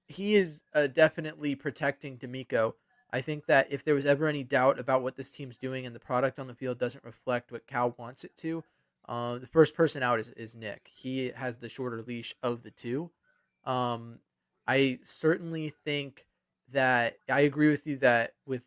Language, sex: English, male